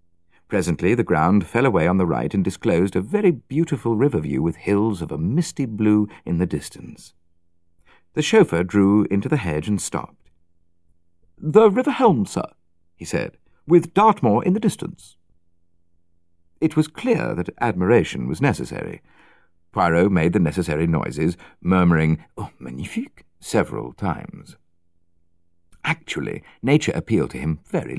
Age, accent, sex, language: 50-69, British, male, English